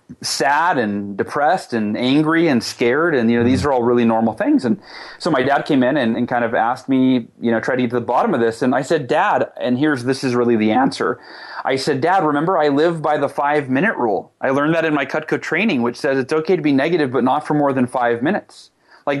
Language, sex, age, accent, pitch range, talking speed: English, male, 30-49, American, 130-195 Hz, 255 wpm